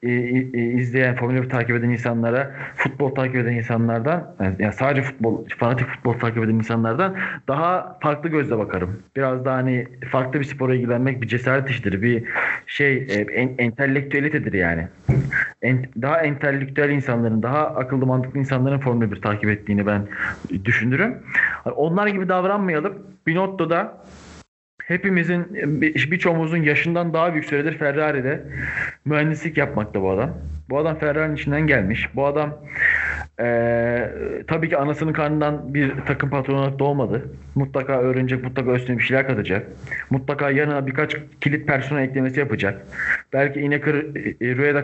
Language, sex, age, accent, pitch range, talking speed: Turkish, male, 40-59, native, 125-165 Hz, 130 wpm